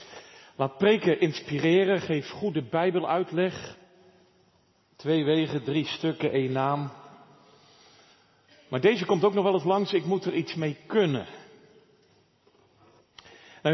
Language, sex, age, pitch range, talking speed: Dutch, male, 40-59, 140-185 Hz, 120 wpm